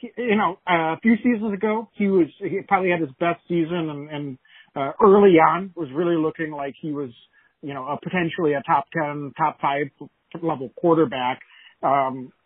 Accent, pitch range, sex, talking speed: American, 150-180 Hz, male, 180 wpm